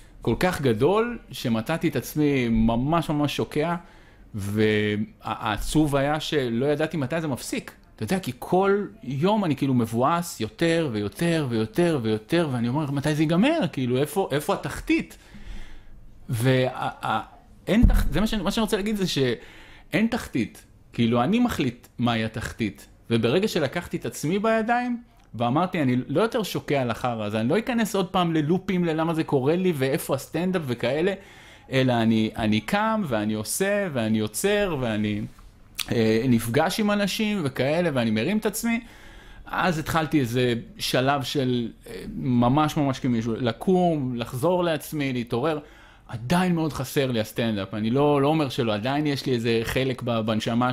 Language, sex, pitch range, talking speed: Hebrew, male, 115-170 Hz, 150 wpm